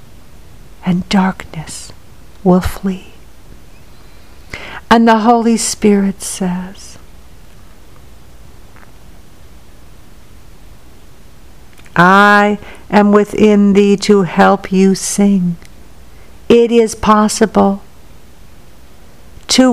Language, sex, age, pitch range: English, female, 60-79, 185-240 Hz